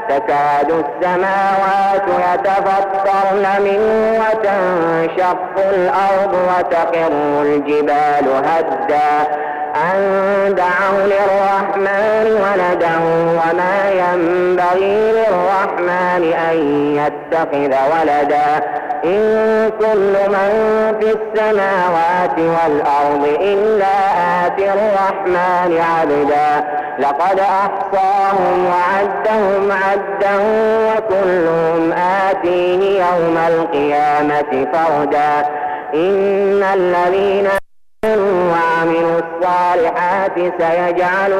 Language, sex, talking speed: Arabic, male, 65 wpm